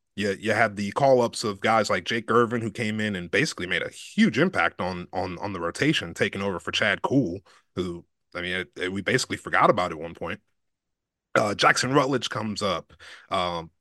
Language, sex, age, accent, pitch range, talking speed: English, male, 30-49, American, 95-130 Hz, 210 wpm